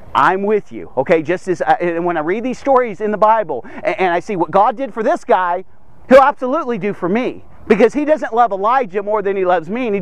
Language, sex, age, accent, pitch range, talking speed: English, male, 40-59, American, 195-280 Hz, 250 wpm